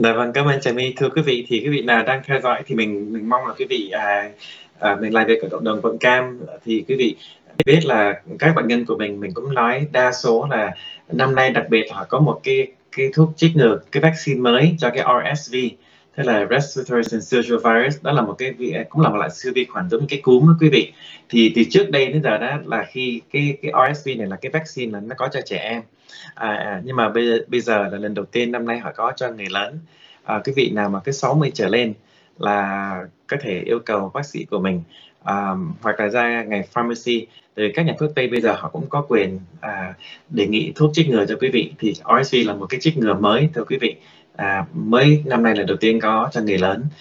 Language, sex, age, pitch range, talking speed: Vietnamese, male, 20-39, 100-135 Hz, 245 wpm